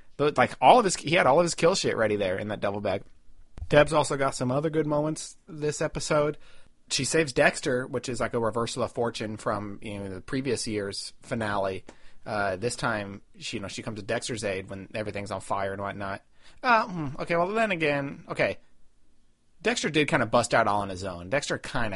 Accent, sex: American, male